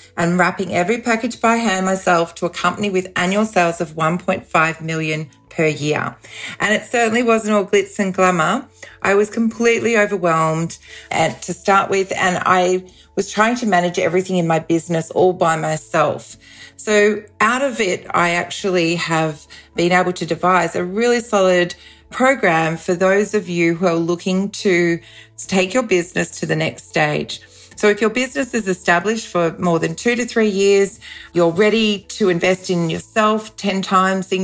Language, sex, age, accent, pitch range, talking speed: English, female, 40-59, Australian, 175-210 Hz, 170 wpm